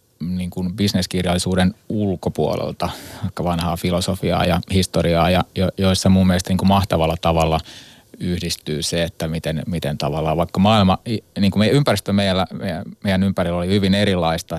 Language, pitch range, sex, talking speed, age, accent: Finnish, 85-100 Hz, male, 150 wpm, 30-49, native